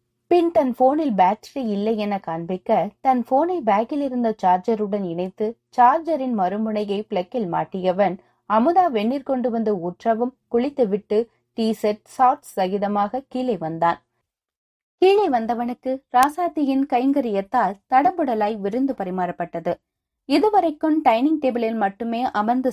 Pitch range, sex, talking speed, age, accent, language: 190-260 Hz, female, 105 wpm, 20-39, native, Tamil